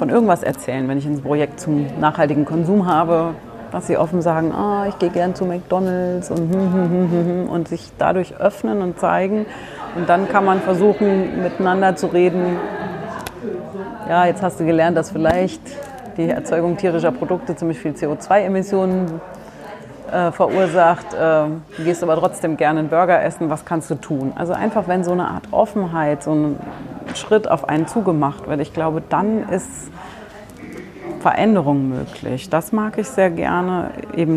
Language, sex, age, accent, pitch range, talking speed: German, female, 30-49, German, 160-195 Hz, 165 wpm